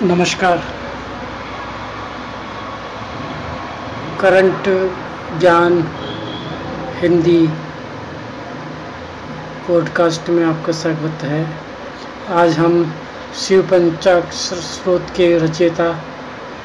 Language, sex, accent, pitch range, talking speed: Hindi, male, native, 170-185 Hz, 60 wpm